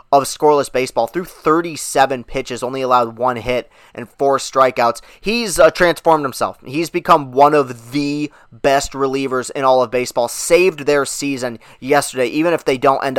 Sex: male